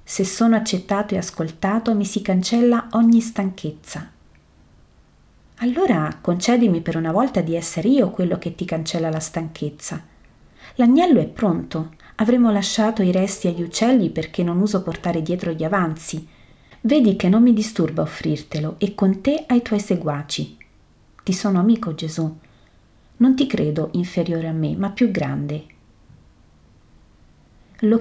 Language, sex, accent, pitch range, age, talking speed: Italian, female, native, 160-210 Hz, 40-59, 140 wpm